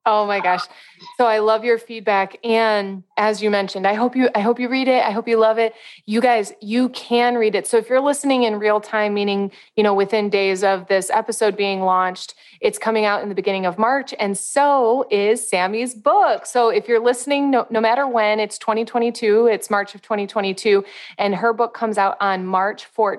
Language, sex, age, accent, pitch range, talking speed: English, female, 20-39, American, 195-235 Hz, 210 wpm